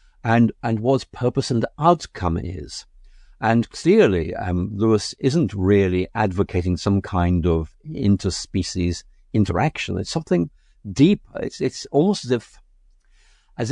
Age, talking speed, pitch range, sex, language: 60-79, 125 wpm, 95-135 Hz, male, English